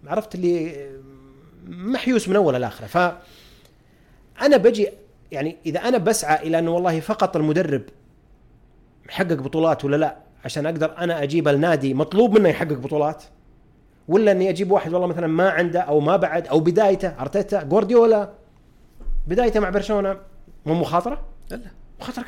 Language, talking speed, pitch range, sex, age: Arabic, 145 wpm, 150-210 Hz, male, 30-49